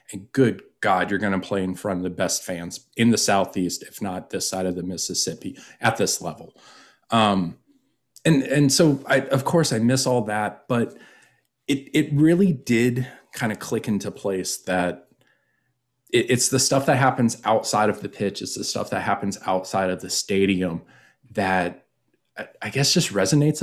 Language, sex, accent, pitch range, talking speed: English, male, American, 95-125 Hz, 180 wpm